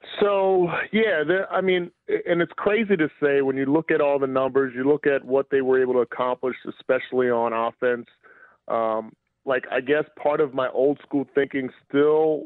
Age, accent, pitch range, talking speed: 30-49, American, 120-145 Hz, 190 wpm